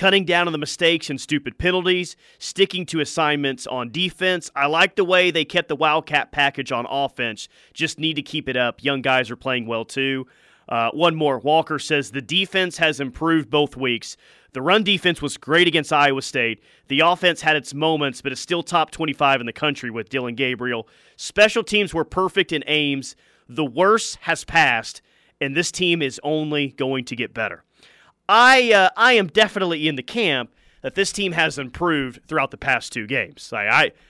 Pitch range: 140-180 Hz